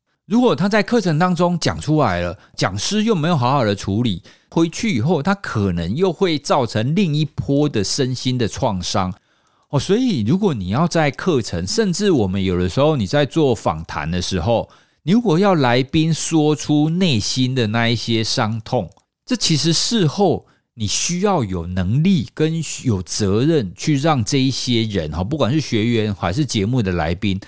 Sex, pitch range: male, 105-170 Hz